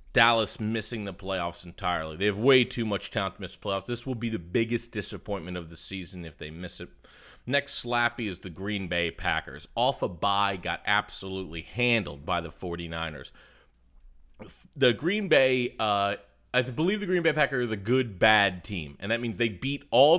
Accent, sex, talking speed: American, male, 190 wpm